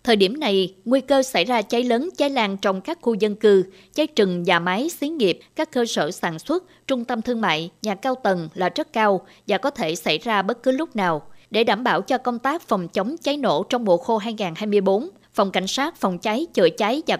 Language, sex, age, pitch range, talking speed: Vietnamese, female, 20-39, 195-265 Hz, 240 wpm